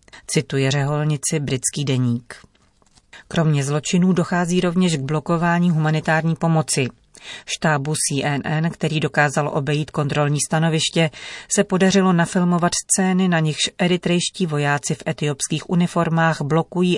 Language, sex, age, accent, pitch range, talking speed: Czech, female, 40-59, native, 140-165 Hz, 110 wpm